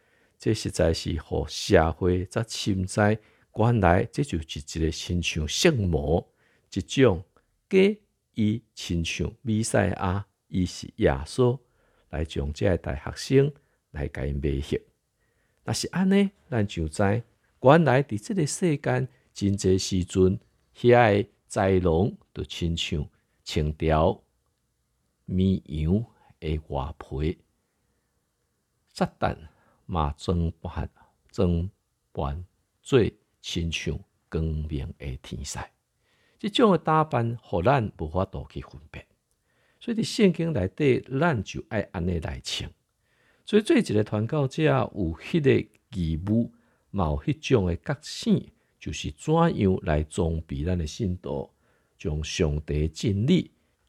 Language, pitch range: Chinese, 80-120 Hz